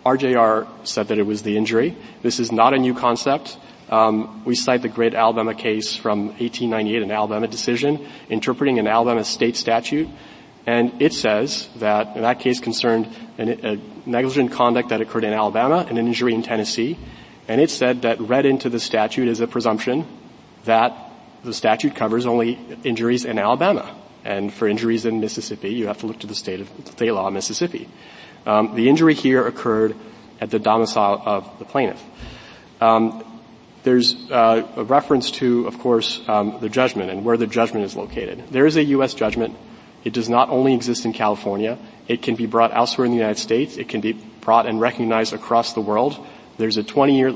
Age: 30-49